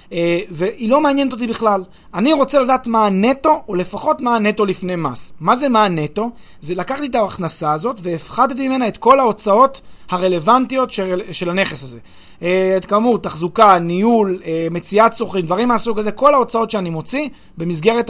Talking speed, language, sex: 160 wpm, Hebrew, male